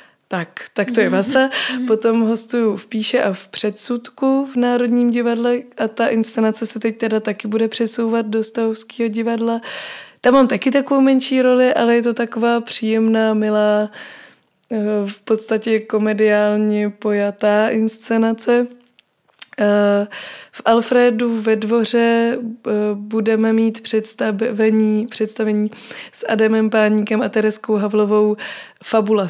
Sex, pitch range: female, 215-245 Hz